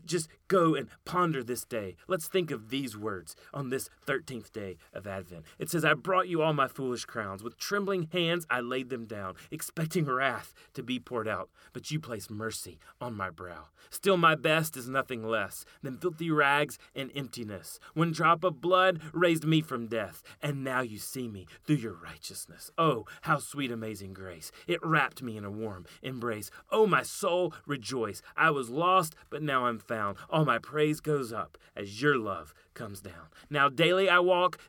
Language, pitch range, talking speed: English, 110-160 Hz, 190 wpm